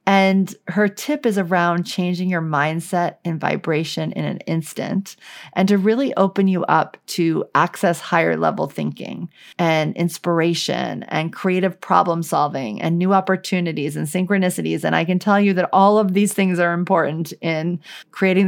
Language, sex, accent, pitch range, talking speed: English, female, American, 170-200 Hz, 160 wpm